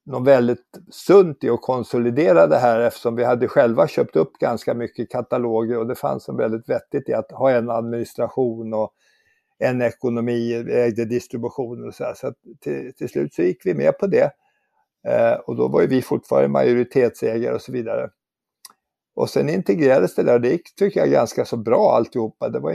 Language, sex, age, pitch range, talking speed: Swedish, male, 60-79, 115-135 Hz, 195 wpm